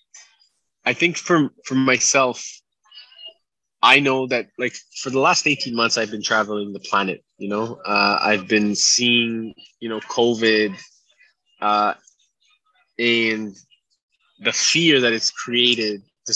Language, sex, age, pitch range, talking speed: English, male, 20-39, 110-145 Hz, 130 wpm